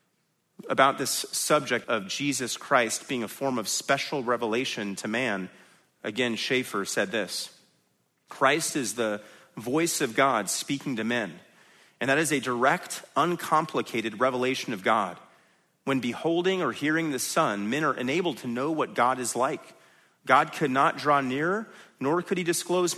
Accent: American